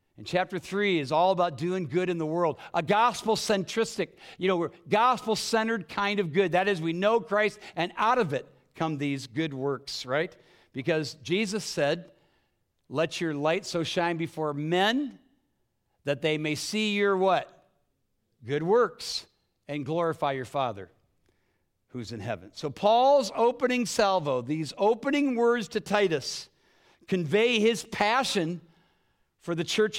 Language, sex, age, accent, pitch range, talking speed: English, male, 60-79, American, 150-220 Hz, 145 wpm